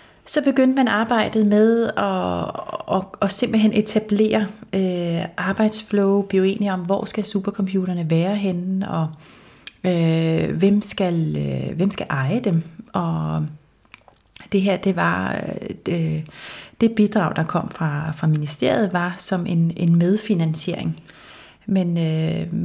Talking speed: 130 wpm